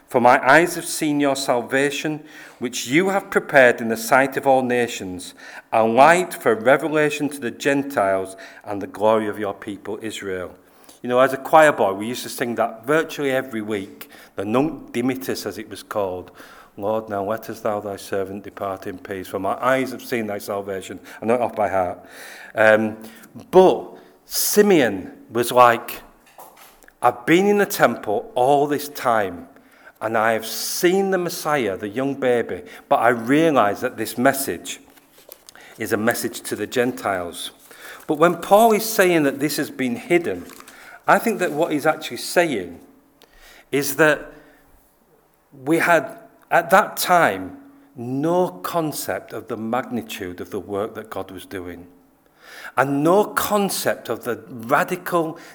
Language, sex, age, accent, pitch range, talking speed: English, male, 40-59, British, 110-165 Hz, 165 wpm